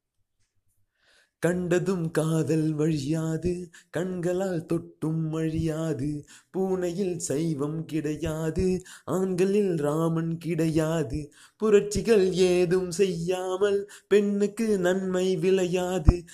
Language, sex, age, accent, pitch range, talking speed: Tamil, male, 30-49, native, 160-205 Hz, 65 wpm